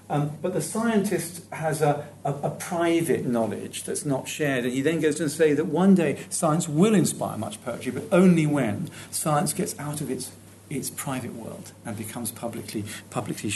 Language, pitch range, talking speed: English, 110-150 Hz, 185 wpm